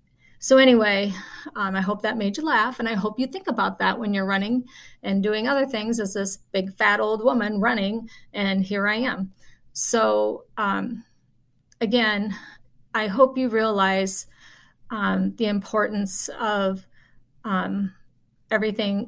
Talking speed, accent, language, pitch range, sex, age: 150 wpm, American, English, 190-220 Hz, female, 30-49